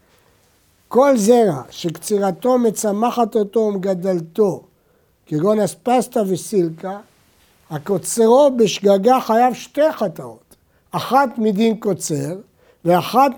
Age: 60-79